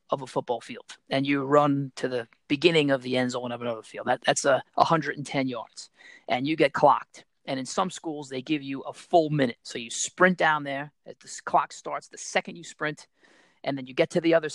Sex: male